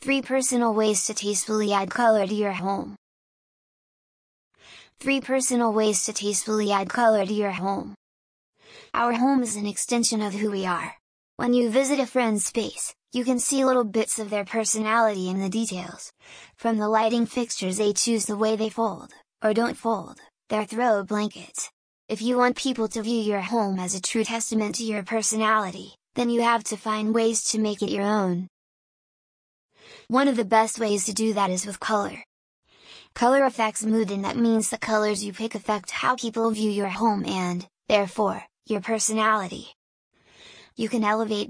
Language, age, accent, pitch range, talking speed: English, 10-29, American, 205-230 Hz, 175 wpm